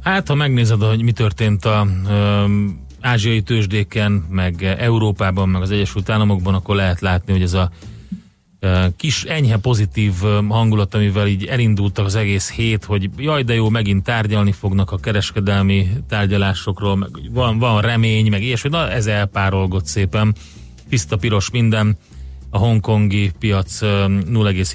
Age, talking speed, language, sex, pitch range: 30-49, 140 wpm, Hungarian, male, 100-110 Hz